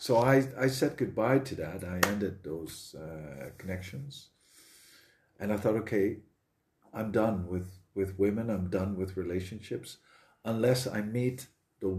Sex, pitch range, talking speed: male, 95-115 Hz, 145 wpm